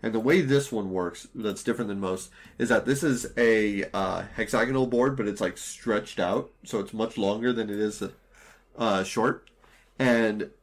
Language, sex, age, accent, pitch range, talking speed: English, male, 30-49, American, 105-125 Hz, 175 wpm